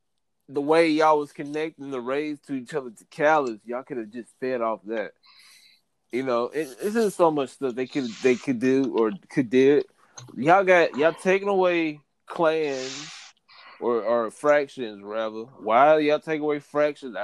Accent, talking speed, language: American, 170 wpm, English